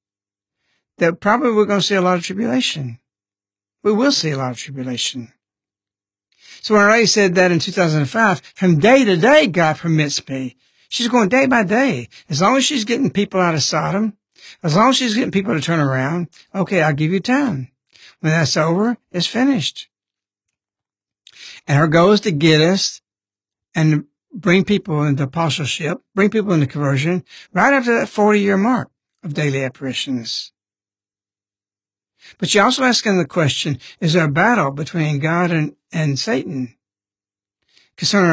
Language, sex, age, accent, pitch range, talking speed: English, male, 60-79, American, 120-195 Hz, 165 wpm